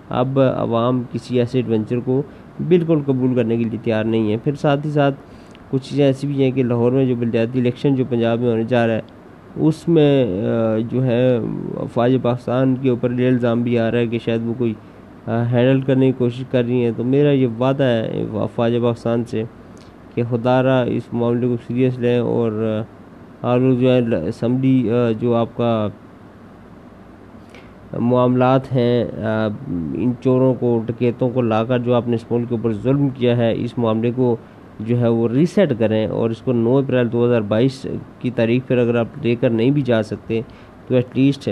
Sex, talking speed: male, 190 wpm